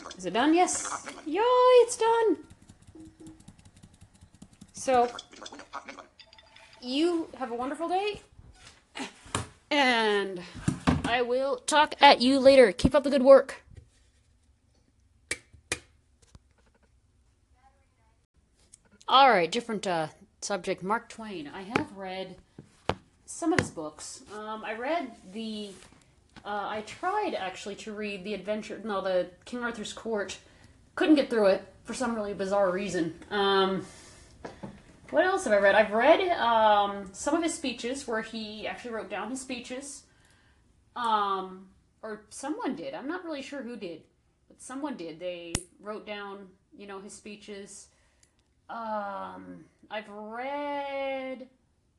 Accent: American